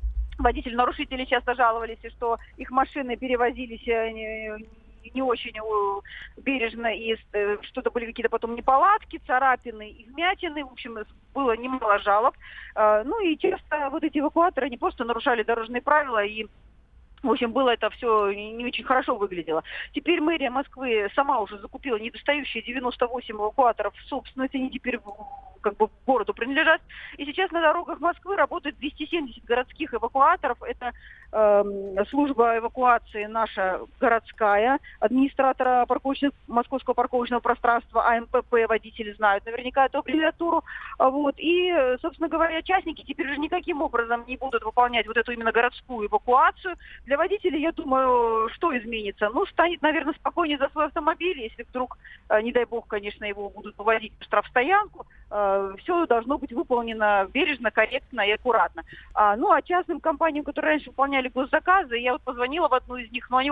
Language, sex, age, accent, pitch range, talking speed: Russian, female, 40-59, native, 225-290 Hz, 145 wpm